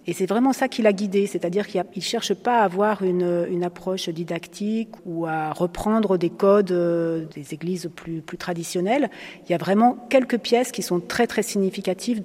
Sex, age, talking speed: female, 40-59, 185 wpm